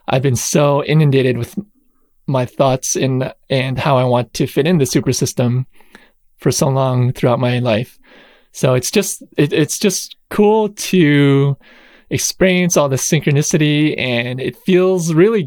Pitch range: 135-180 Hz